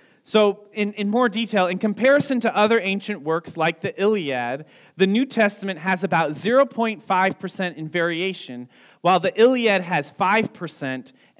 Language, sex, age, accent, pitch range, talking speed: English, male, 40-59, American, 150-210 Hz, 140 wpm